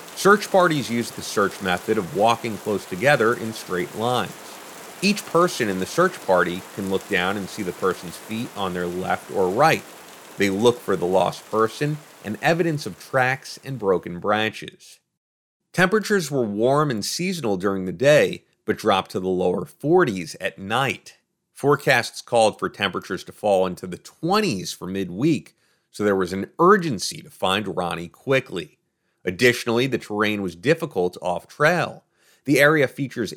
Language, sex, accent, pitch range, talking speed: English, male, American, 95-145 Hz, 160 wpm